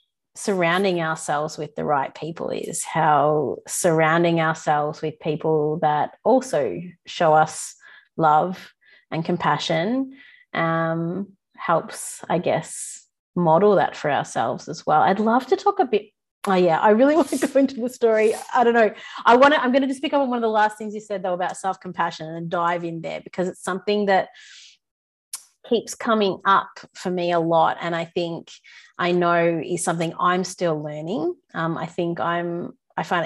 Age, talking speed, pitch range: 30-49, 175 wpm, 165-210 Hz